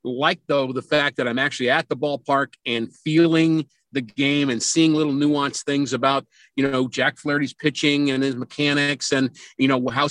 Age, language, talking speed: 50-69, English, 190 wpm